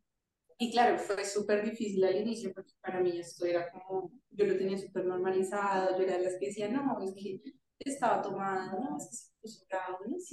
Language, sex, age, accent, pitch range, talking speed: Spanish, female, 20-39, Colombian, 190-235 Hz, 185 wpm